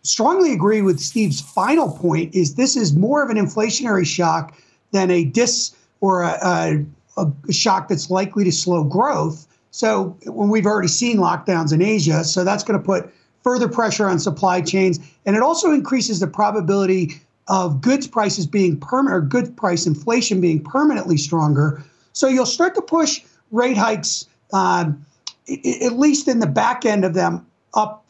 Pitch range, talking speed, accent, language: 175-230 Hz, 170 wpm, American, English